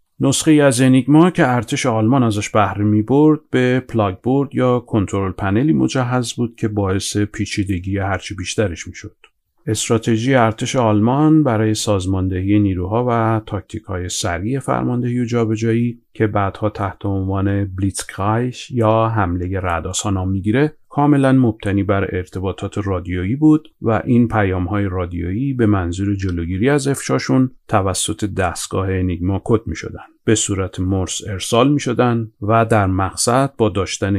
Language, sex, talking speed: Persian, male, 130 wpm